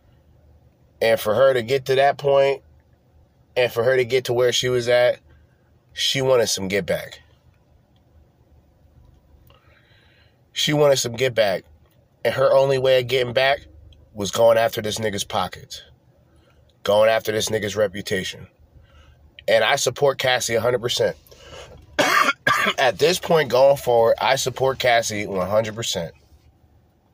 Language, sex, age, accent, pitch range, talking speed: English, male, 30-49, American, 100-130 Hz, 135 wpm